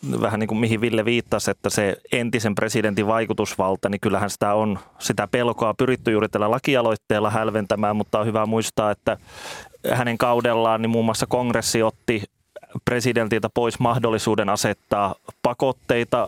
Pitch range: 100-115 Hz